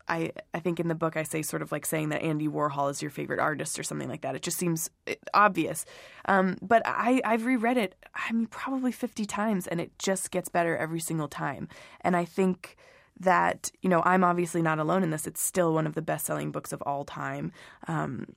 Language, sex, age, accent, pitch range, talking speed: English, female, 20-39, American, 160-190 Hz, 230 wpm